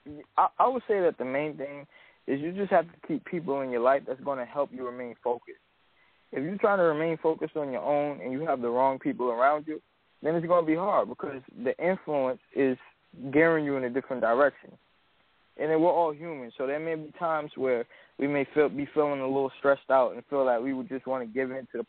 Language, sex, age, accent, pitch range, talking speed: English, male, 20-39, American, 130-155 Hz, 240 wpm